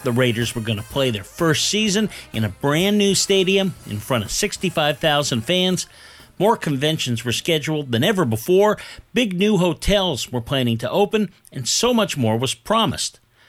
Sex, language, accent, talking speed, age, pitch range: male, English, American, 175 wpm, 50-69, 125-205 Hz